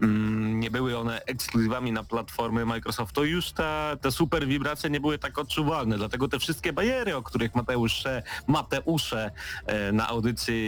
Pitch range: 110-135 Hz